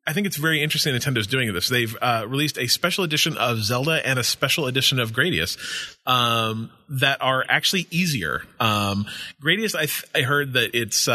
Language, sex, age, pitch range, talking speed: English, male, 30-49, 110-140 Hz, 190 wpm